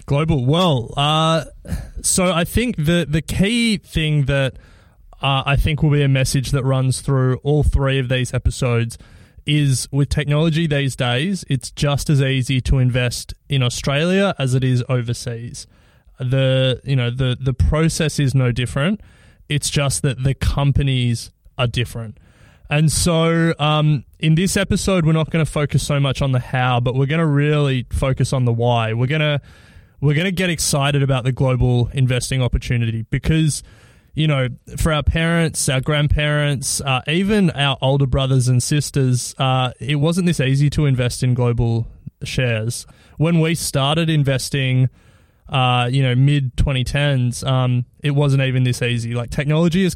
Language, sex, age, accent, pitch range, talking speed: English, male, 20-39, Australian, 125-150 Hz, 165 wpm